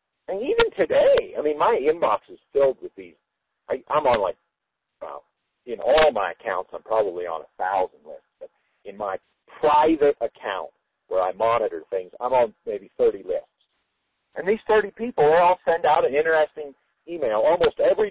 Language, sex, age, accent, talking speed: English, male, 50-69, American, 175 wpm